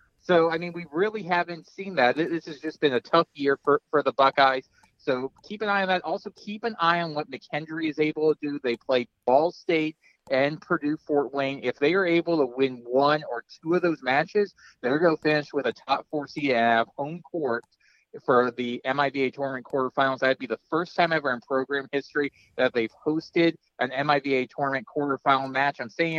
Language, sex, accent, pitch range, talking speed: English, male, American, 130-190 Hz, 215 wpm